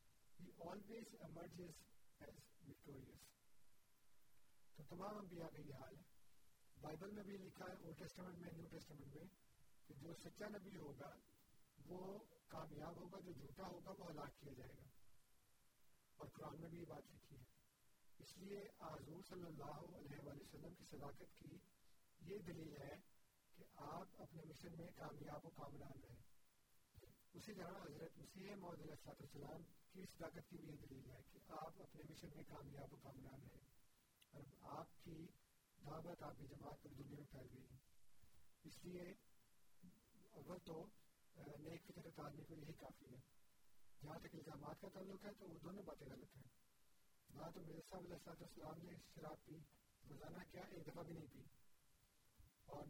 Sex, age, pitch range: male, 50-69, 140-175 Hz